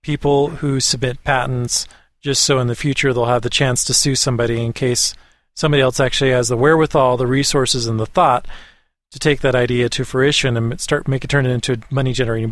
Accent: American